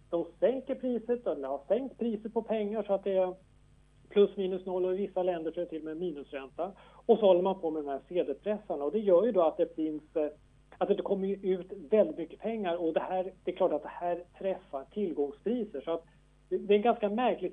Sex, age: male, 40-59